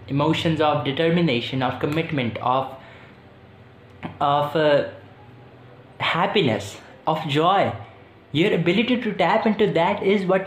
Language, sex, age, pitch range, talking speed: Urdu, male, 20-39, 110-160 Hz, 110 wpm